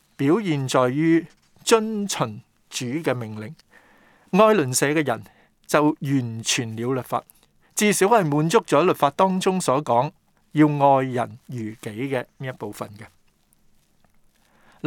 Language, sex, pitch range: Chinese, male, 120-175 Hz